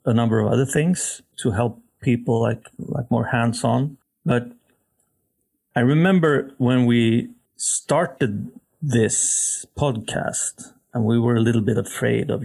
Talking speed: 135 wpm